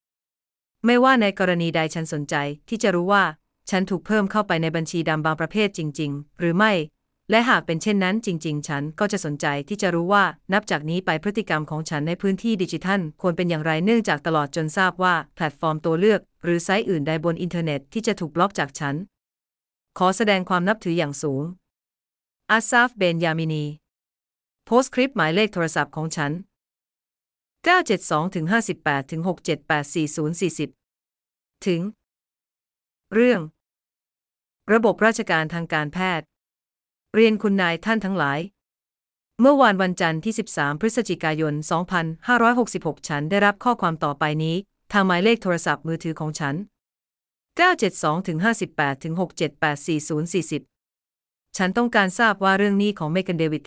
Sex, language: female, Thai